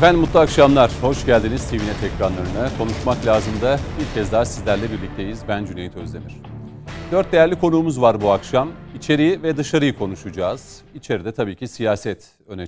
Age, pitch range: 40-59, 95-120 Hz